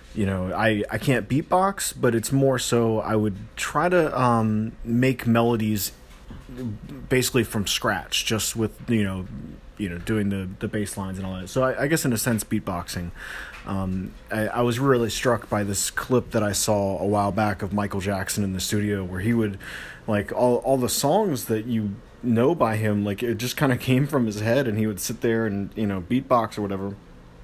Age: 30-49